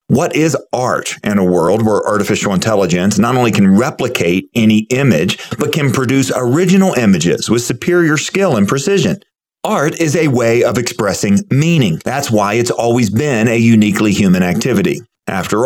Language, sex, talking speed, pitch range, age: English, male, 160 wpm, 105-160 Hz, 40-59